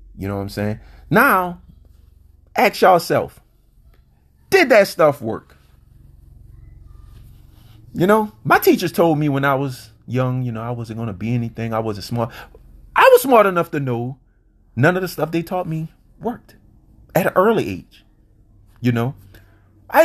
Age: 30-49